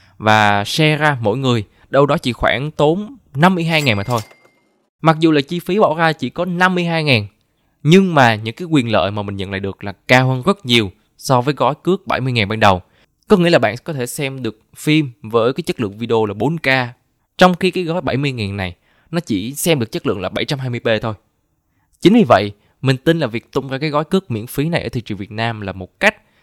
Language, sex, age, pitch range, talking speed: Vietnamese, male, 20-39, 110-160 Hz, 235 wpm